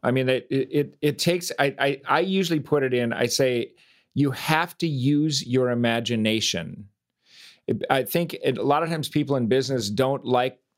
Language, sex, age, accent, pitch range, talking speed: English, male, 40-59, American, 125-155 Hz, 185 wpm